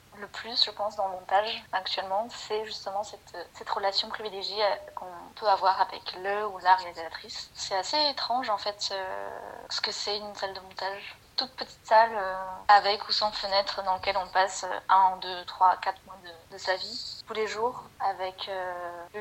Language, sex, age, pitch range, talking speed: French, female, 20-39, 190-215 Hz, 195 wpm